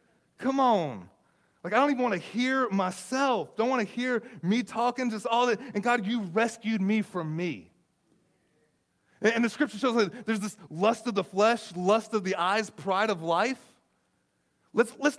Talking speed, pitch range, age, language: 180 wpm, 165-230 Hz, 30-49, English